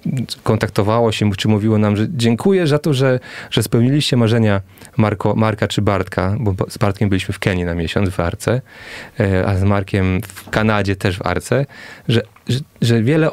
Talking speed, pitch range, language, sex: 175 wpm, 100-125 Hz, Polish, male